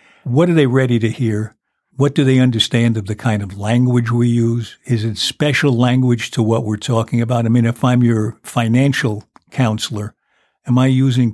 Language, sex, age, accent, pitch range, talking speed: English, male, 60-79, American, 115-130 Hz, 190 wpm